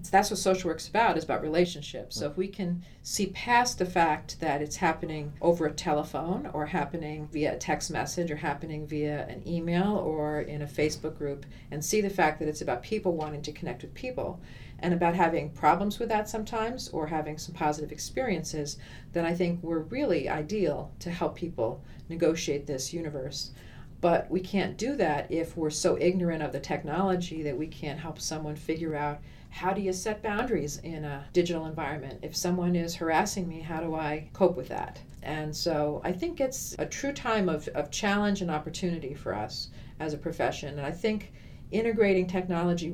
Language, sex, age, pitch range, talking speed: English, female, 40-59, 150-185 Hz, 195 wpm